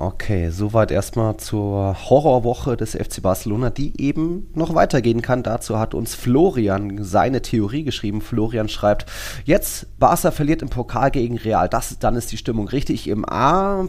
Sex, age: male, 30-49